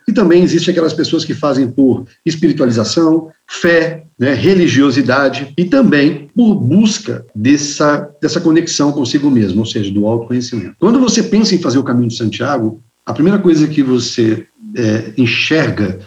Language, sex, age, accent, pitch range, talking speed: Portuguese, male, 50-69, Brazilian, 120-175 Hz, 155 wpm